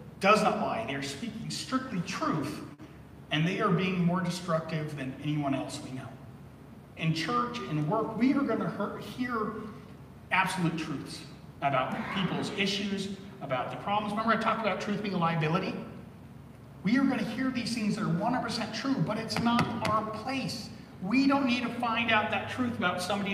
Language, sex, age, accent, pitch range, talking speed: English, male, 40-59, American, 155-220 Hz, 180 wpm